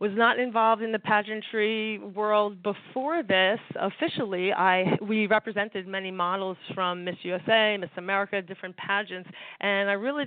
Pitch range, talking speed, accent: 195-245 Hz, 145 wpm, American